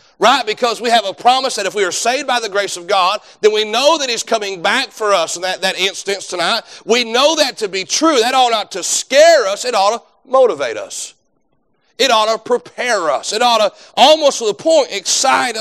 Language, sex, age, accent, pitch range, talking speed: English, male, 40-59, American, 215-290 Hz, 230 wpm